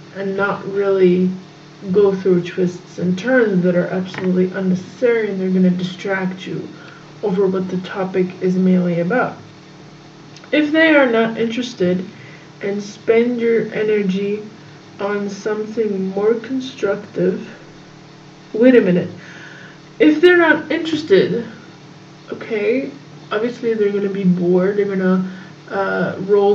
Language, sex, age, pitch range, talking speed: English, female, 20-39, 175-220 Hz, 120 wpm